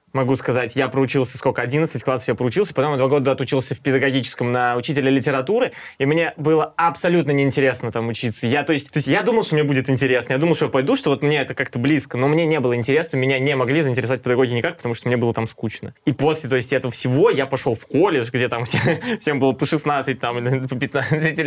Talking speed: 230 wpm